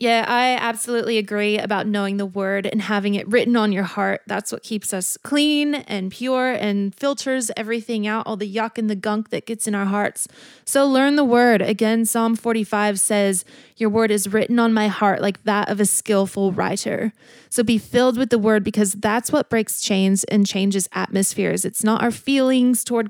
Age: 20-39